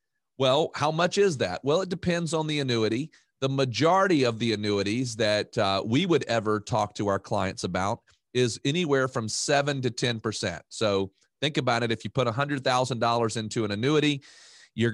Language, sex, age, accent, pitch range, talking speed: English, male, 40-59, American, 110-145 Hz, 190 wpm